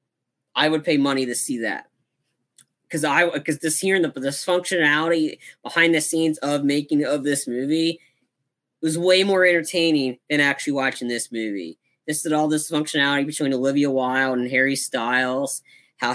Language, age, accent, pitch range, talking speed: English, 20-39, American, 130-145 Hz, 155 wpm